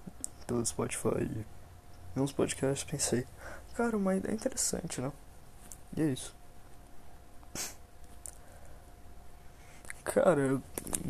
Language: Portuguese